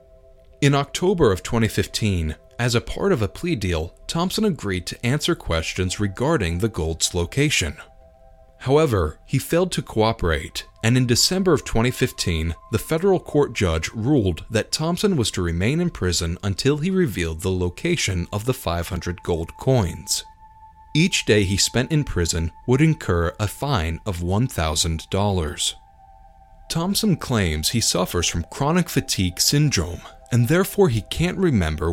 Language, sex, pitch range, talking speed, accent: English, male, 85-130 Hz, 145 wpm, American